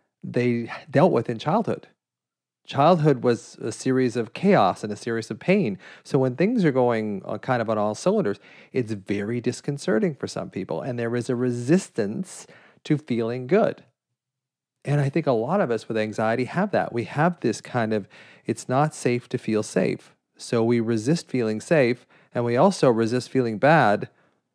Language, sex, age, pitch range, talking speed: English, male, 40-59, 115-150 Hz, 180 wpm